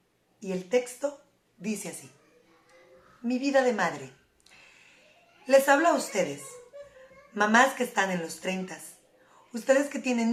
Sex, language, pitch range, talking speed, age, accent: female, Spanish, 195-260 Hz, 130 wpm, 30-49, Mexican